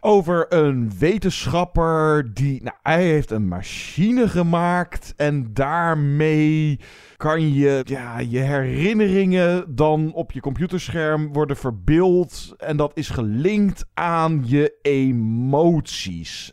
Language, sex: Dutch, male